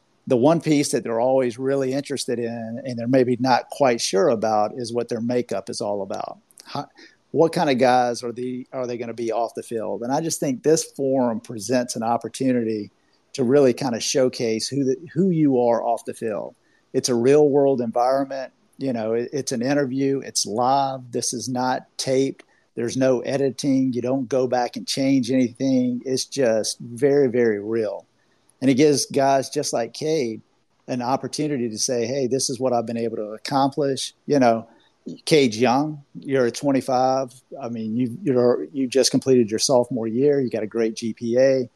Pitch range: 120-135 Hz